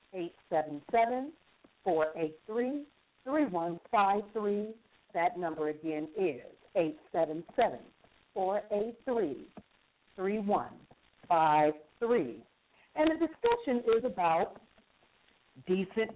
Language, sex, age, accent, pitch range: English, female, 50-69, American, 160-235 Hz